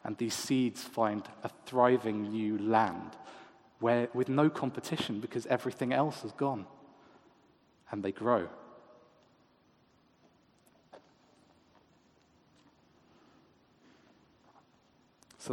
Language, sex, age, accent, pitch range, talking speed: English, male, 40-59, British, 110-130 Hz, 80 wpm